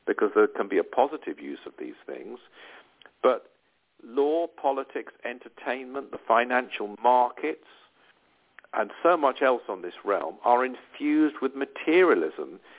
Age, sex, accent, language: 50-69, male, British, English